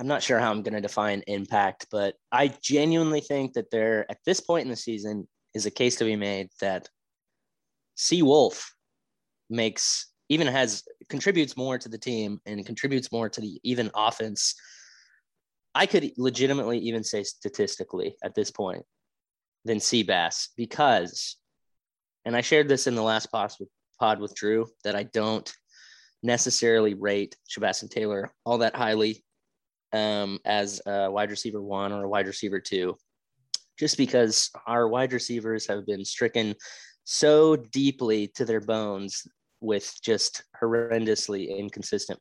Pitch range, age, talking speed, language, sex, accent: 105-125 Hz, 20-39, 150 wpm, English, male, American